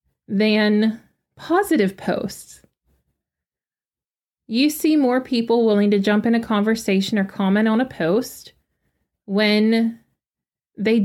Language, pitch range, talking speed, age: English, 205-250 Hz, 110 wpm, 20-39